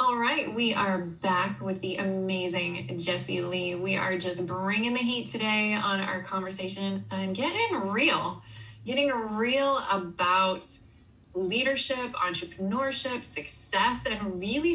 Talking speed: 125 wpm